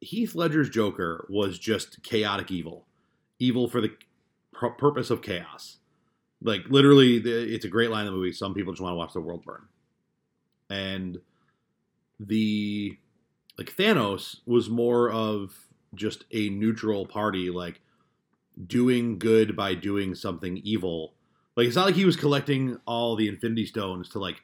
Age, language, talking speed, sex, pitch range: 30-49, English, 150 wpm, male, 95-125 Hz